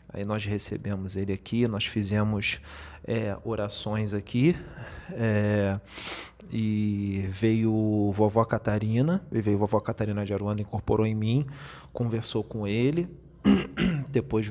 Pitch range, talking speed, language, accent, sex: 105-125 Hz, 105 wpm, Portuguese, Brazilian, male